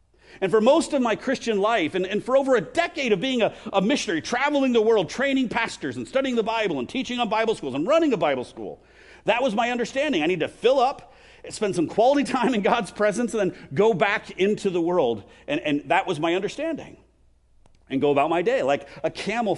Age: 50-69